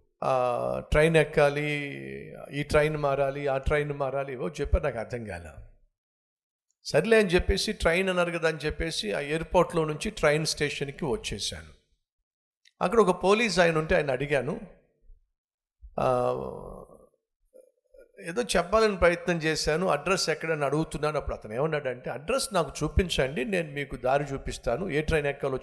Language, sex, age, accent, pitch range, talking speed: Telugu, male, 50-69, native, 135-185 Hz, 125 wpm